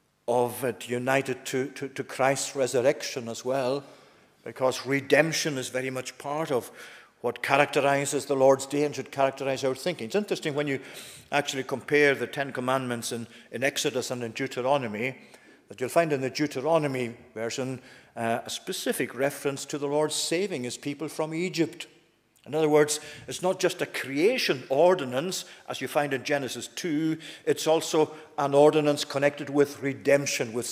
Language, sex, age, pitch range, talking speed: English, male, 50-69, 125-145 Hz, 165 wpm